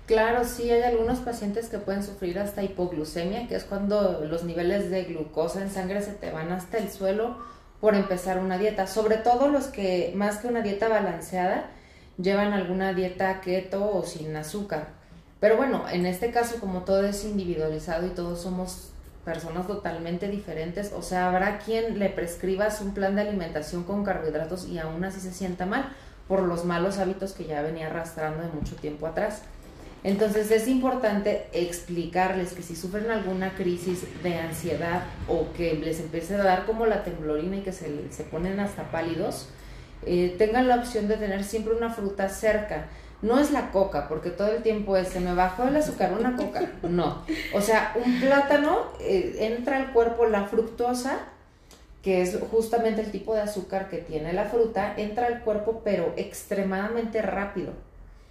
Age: 30-49